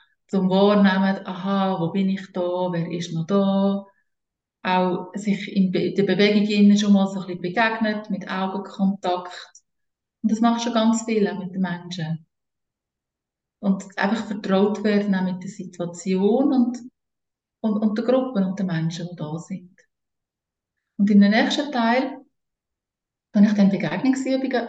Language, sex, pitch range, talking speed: German, female, 185-230 Hz, 150 wpm